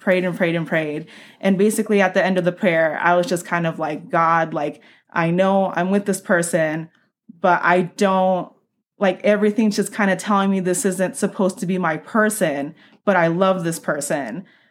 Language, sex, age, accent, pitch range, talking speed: English, female, 20-39, American, 175-200 Hz, 200 wpm